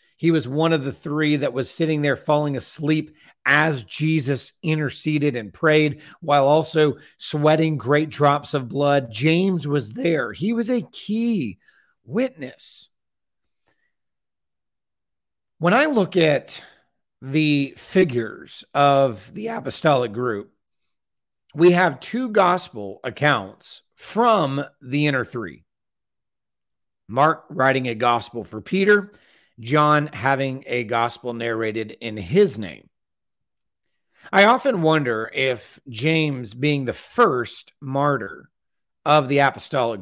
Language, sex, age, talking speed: English, male, 40-59, 115 wpm